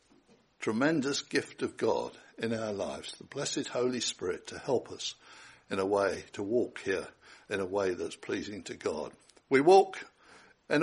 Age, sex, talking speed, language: 60-79, male, 165 wpm, English